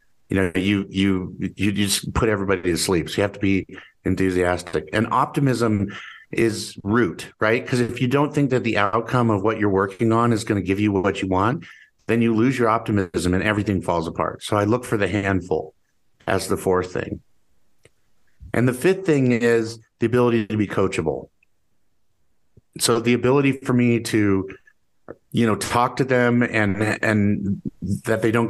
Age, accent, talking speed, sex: 50-69, American, 185 wpm, male